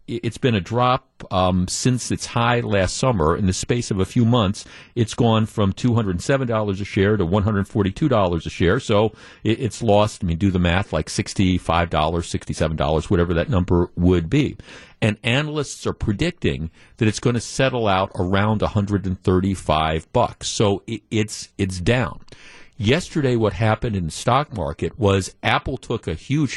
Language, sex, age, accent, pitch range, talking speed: English, male, 50-69, American, 95-120 Hz, 165 wpm